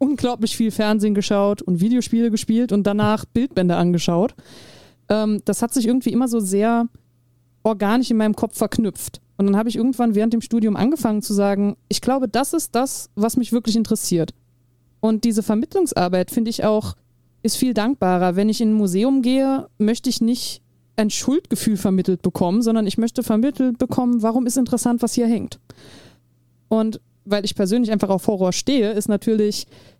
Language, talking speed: German, 175 wpm